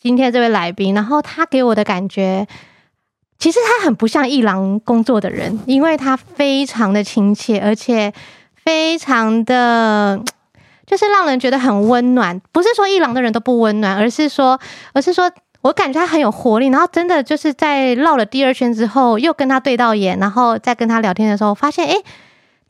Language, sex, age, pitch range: Chinese, female, 20-39, 215-270 Hz